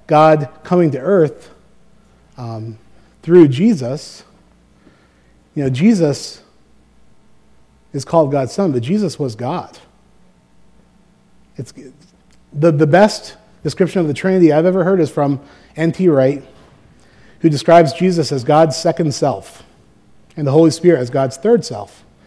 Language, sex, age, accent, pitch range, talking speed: English, male, 30-49, American, 130-170 Hz, 130 wpm